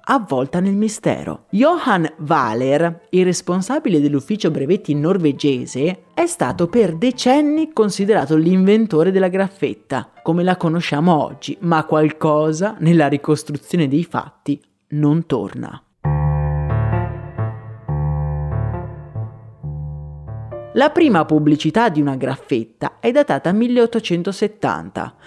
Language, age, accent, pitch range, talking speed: Italian, 30-49, native, 145-210 Hz, 95 wpm